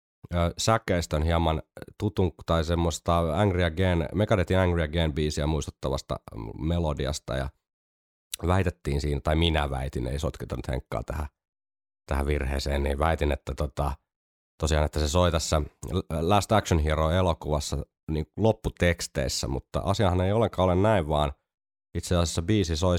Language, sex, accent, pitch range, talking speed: Finnish, male, native, 70-90 Hz, 125 wpm